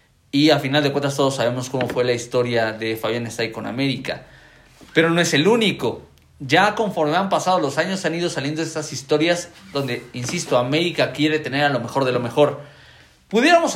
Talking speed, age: 190 wpm, 40-59